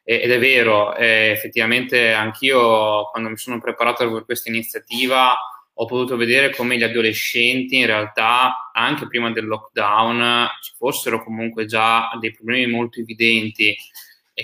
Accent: native